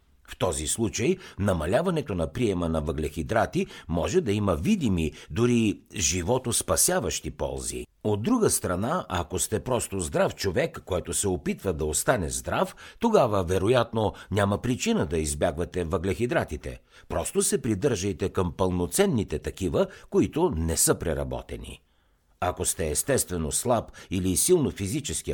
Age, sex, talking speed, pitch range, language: 60-79, male, 125 wpm, 85-120 Hz, Bulgarian